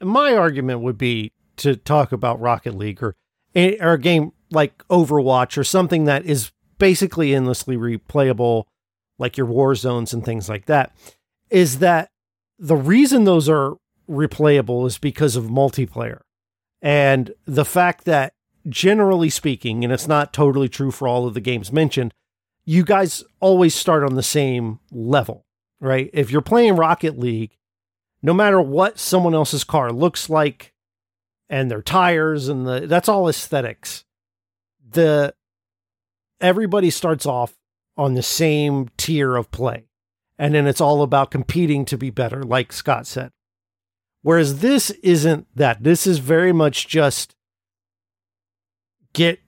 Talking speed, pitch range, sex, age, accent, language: 145 wpm, 115-160 Hz, male, 50-69, American, English